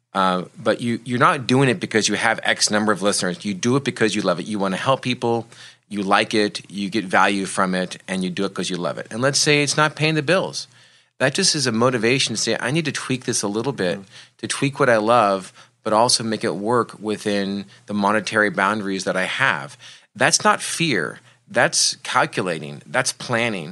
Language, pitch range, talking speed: English, 100-135 Hz, 230 wpm